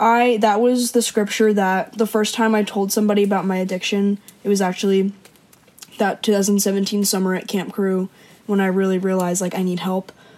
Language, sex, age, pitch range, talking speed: English, female, 10-29, 195-215 Hz, 185 wpm